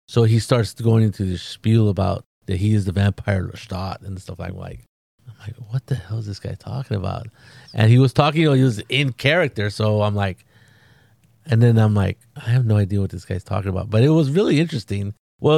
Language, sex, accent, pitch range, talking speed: English, male, American, 100-120 Hz, 225 wpm